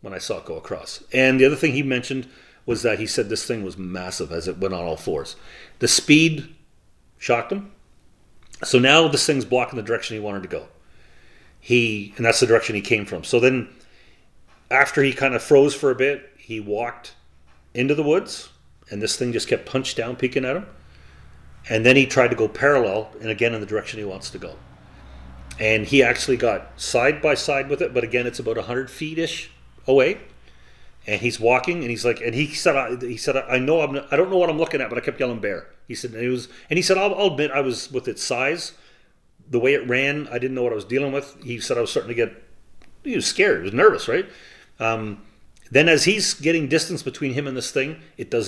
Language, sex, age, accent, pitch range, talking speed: English, male, 40-59, American, 110-150 Hz, 230 wpm